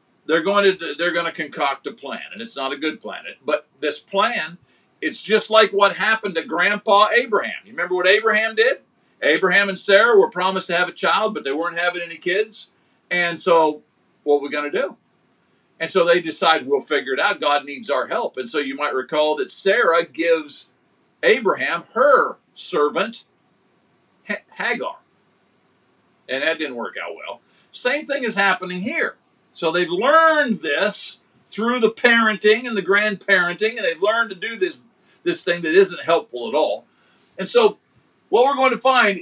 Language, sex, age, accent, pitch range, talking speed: English, male, 50-69, American, 170-225 Hz, 180 wpm